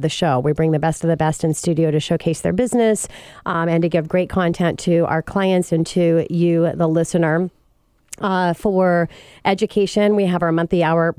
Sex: female